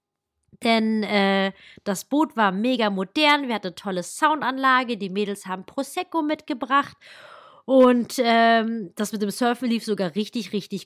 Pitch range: 215-300 Hz